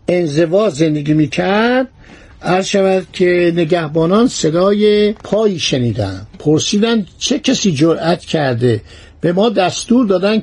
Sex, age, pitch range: male, 60-79, 155-205 Hz